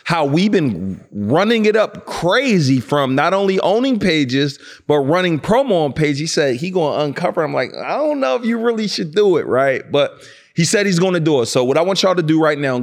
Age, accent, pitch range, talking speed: 30-49, American, 130-170 Hz, 245 wpm